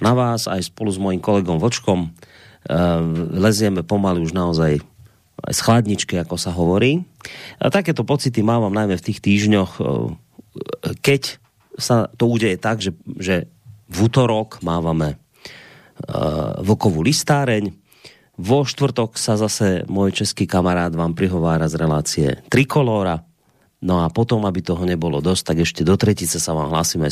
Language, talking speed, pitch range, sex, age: Slovak, 135 wpm, 90-120 Hz, male, 30-49